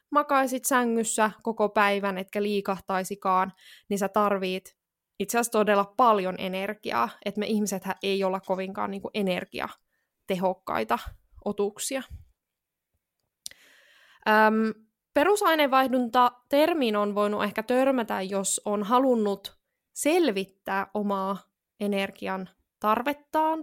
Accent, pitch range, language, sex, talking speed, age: native, 195-245 Hz, Finnish, female, 90 wpm, 20-39